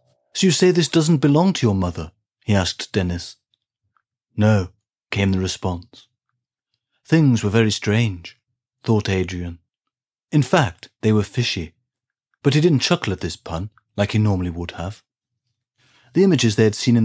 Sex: male